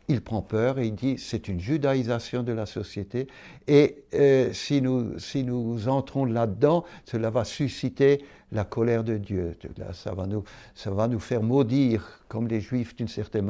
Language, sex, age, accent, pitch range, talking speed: French, male, 60-79, French, 105-135 Hz, 165 wpm